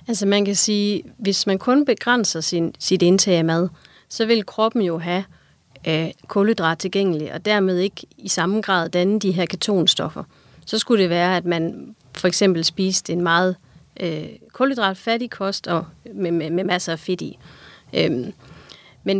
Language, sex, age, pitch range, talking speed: Danish, female, 30-49, 175-205 Hz, 170 wpm